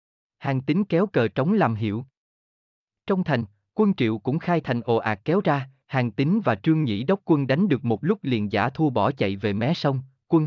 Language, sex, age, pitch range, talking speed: Vietnamese, male, 20-39, 110-165 Hz, 225 wpm